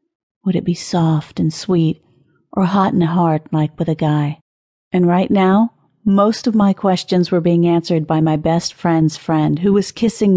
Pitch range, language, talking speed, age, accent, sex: 160-200 Hz, English, 185 wpm, 40-59, American, female